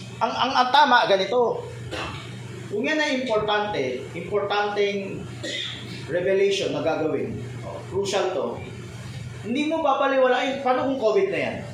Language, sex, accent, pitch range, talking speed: Filipino, male, native, 195-265 Hz, 120 wpm